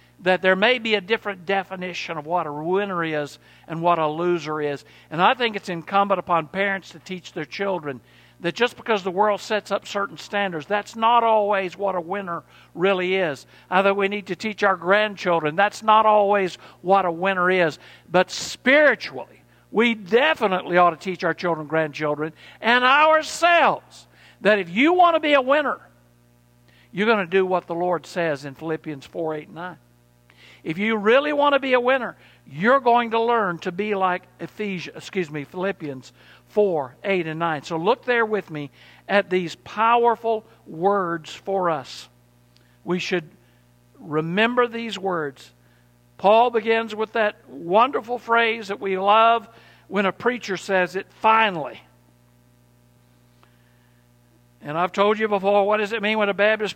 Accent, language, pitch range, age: American, English, 155-215 Hz, 60-79